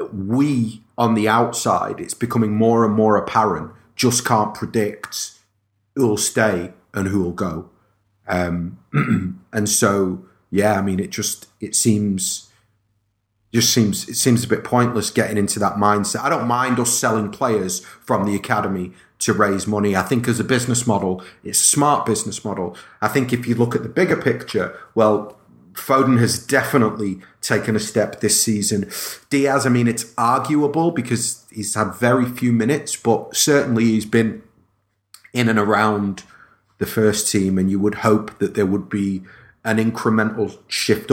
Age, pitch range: 30-49, 100-120 Hz